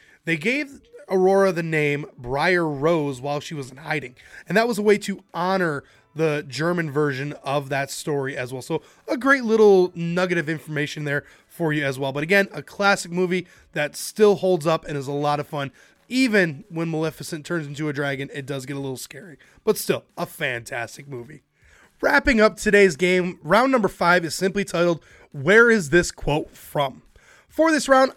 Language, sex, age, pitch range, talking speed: English, male, 20-39, 150-210 Hz, 190 wpm